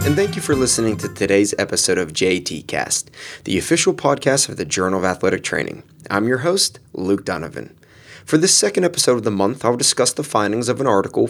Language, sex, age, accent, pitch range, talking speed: English, male, 20-39, American, 95-130 Hz, 210 wpm